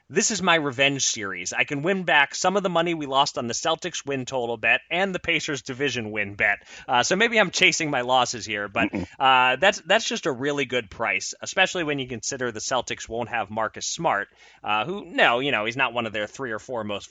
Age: 30-49